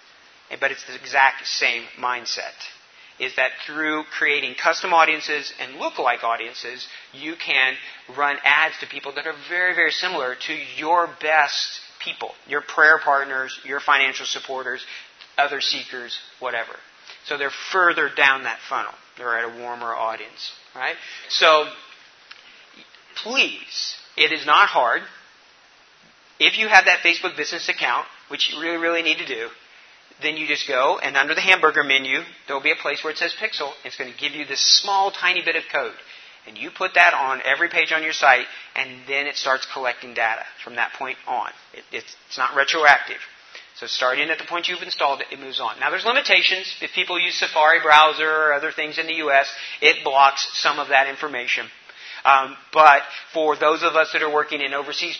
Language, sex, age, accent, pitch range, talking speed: English, male, 40-59, American, 135-165 Hz, 180 wpm